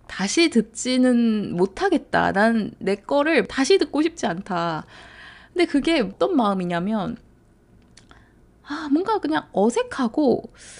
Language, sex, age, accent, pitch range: Korean, female, 20-39, native, 215-290 Hz